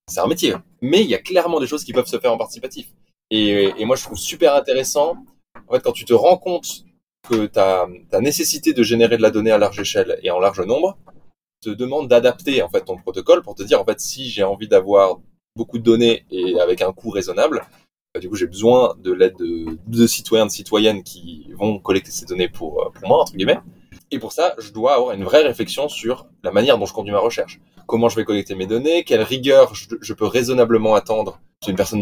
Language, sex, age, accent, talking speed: French, male, 20-39, French, 230 wpm